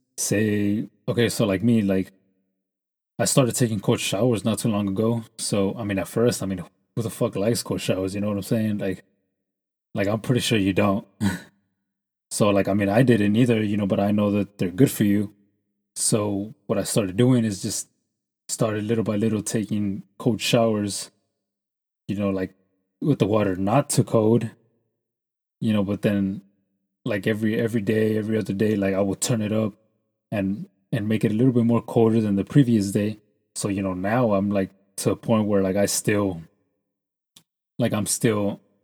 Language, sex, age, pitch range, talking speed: English, male, 20-39, 100-115 Hz, 195 wpm